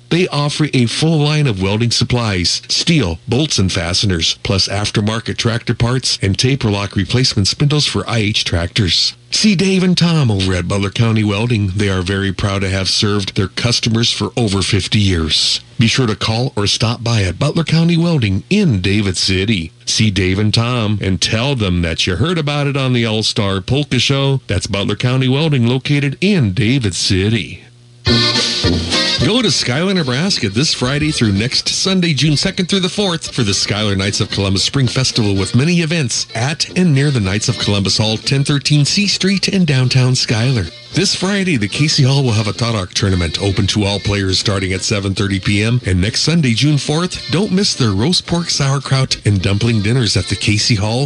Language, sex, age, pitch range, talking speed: English, male, 50-69, 100-145 Hz, 190 wpm